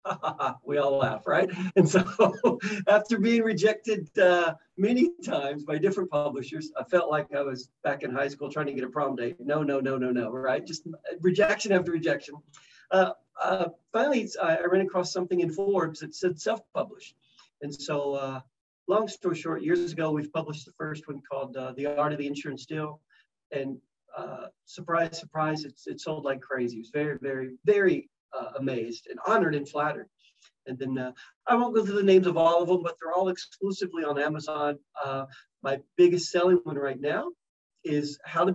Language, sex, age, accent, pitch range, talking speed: English, male, 50-69, American, 145-195 Hz, 190 wpm